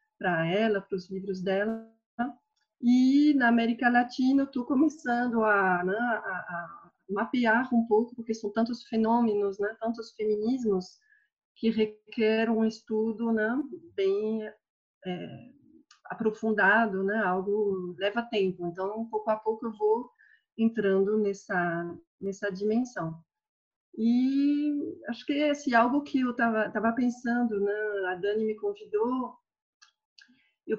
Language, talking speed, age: Portuguese, 125 wpm, 40-59